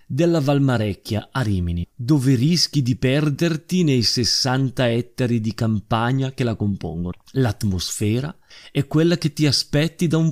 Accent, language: native, Italian